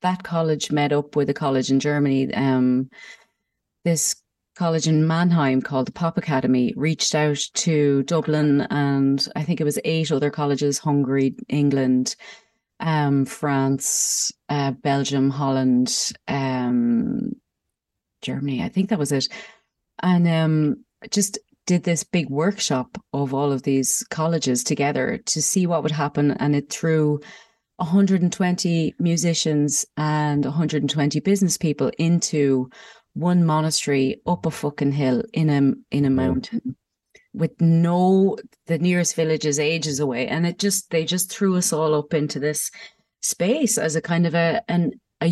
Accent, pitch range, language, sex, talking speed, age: Irish, 145-180 Hz, English, female, 145 wpm, 30-49